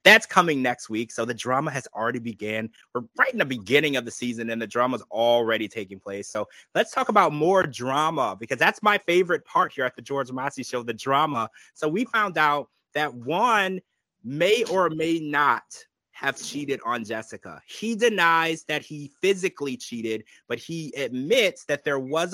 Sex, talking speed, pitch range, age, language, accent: male, 190 wpm, 130-185 Hz, 30-49, English, American